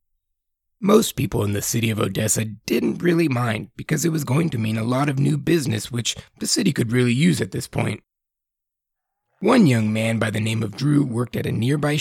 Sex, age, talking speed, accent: male, 30-49, 210 wpm, American